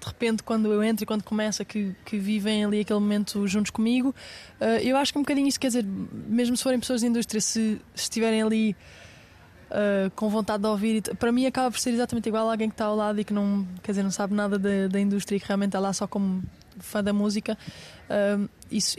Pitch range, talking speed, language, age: 205-230 Hz, 235 wpm, Portuguese, 10-29